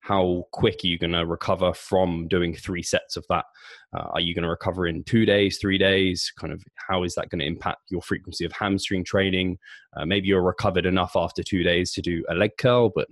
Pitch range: 90-100 Hz